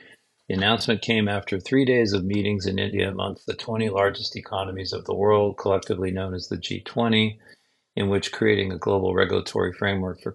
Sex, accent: male, American